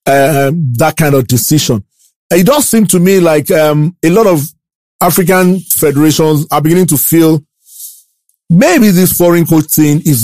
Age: 40-59